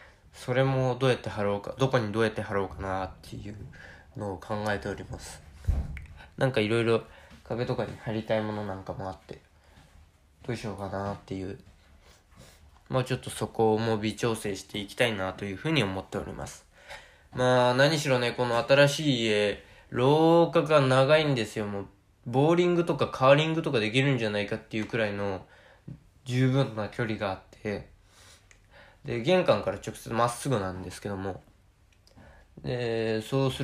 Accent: native